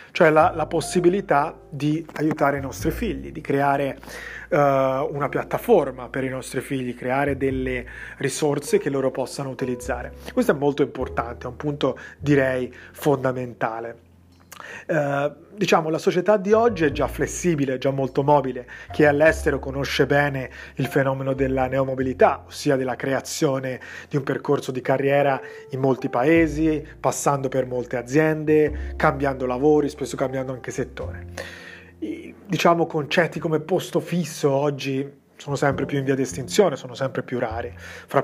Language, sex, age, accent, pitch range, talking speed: Italian, male, 30-49, native, 130-160 Hz, 150 wpm